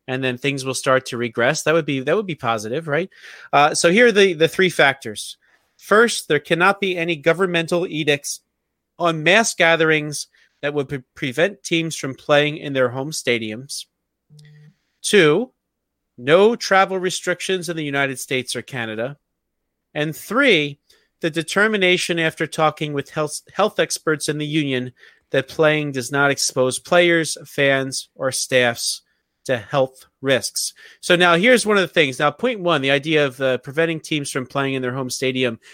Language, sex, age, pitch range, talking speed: English, male, 30-49, 135-175 Hz, 170 wpm